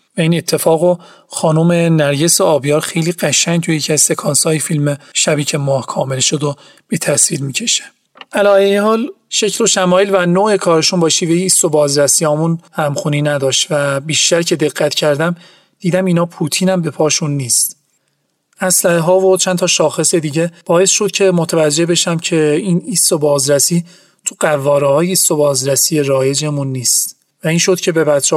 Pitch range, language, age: 145-180 Hz, Persian, 40-59